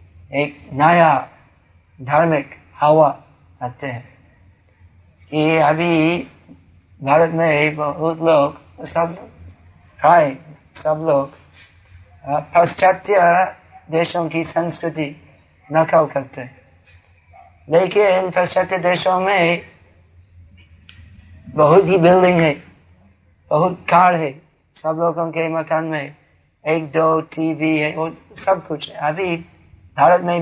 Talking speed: 95 wpm